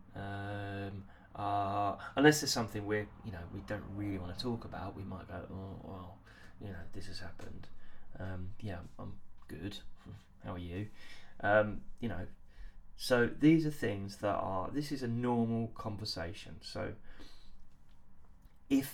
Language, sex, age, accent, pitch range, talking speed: English, male, 20-39, British, 90-115 Hz, 150 wpm